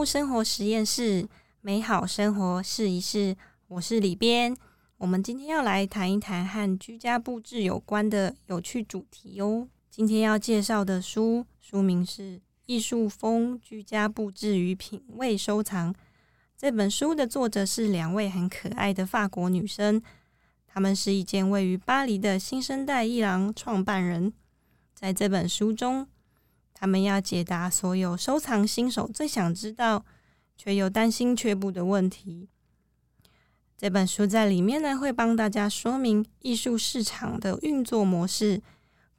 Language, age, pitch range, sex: Chinese, 20-39, 190-230 Hz, female